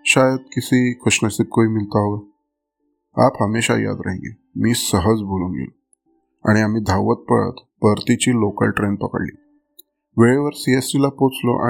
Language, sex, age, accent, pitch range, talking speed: Marathi, male, 20-39, native, 105-130 Hz, 120 wpm